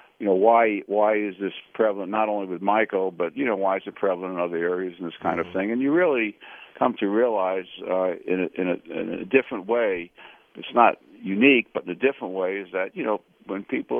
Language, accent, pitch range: English, American, 90-105 Hz